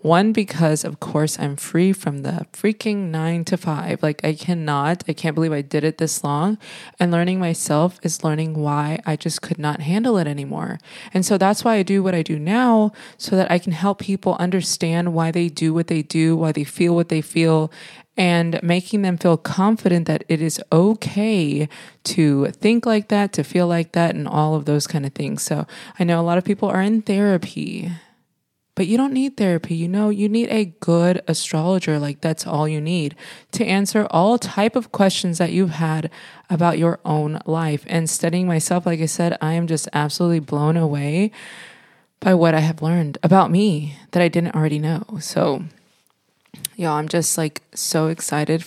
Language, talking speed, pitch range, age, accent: English, 195 wpm, 155-195 Hz, 20-39, American